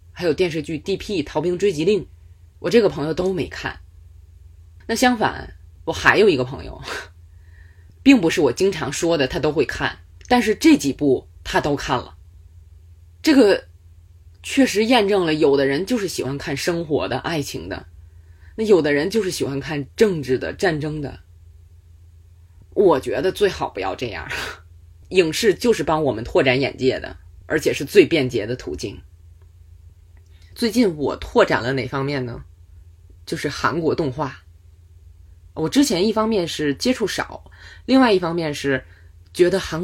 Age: 20-39